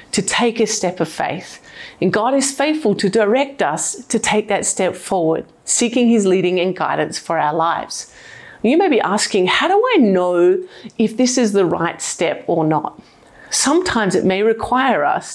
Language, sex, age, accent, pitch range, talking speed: English, female, 30-49, Australian, 170-220 Hz, 185 wpm